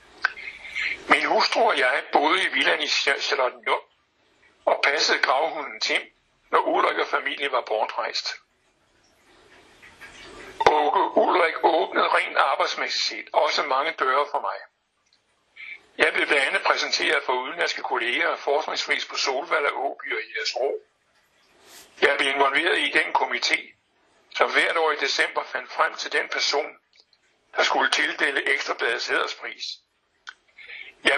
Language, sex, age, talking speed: Danish, male, 60-79, 125 wpm